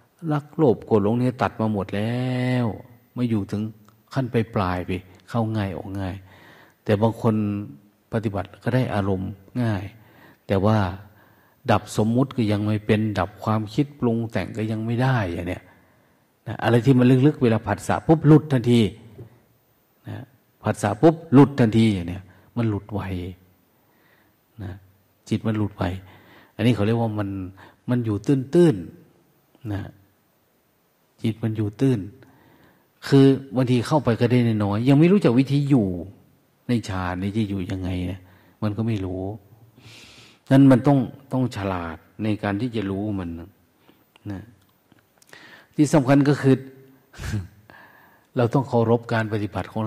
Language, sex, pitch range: Thai, male, 100-120 Hz